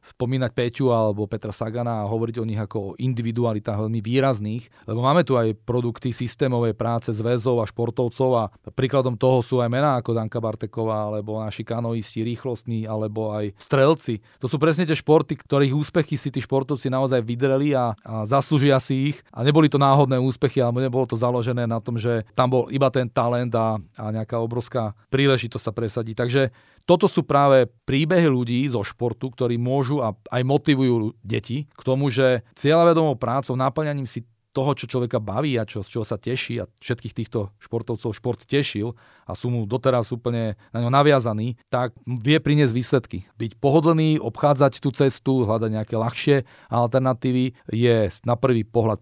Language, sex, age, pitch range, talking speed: Slovak, male, 40-59, 115-135 Hz, 175 wpm